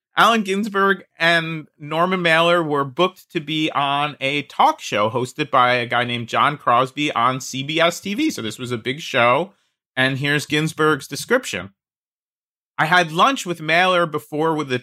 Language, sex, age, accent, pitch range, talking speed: English, male, 30-49, American, 135-180 Hz, 165 wpm